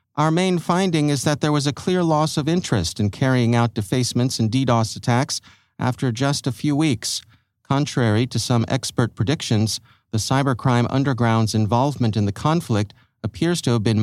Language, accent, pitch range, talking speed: English, American, 110-140 Hz, 170 wpm